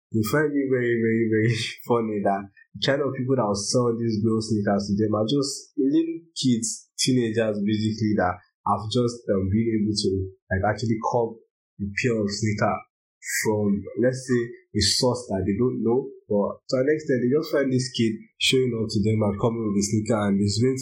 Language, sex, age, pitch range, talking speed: English, male, 20-39, 100-115 Hz, 205 wpm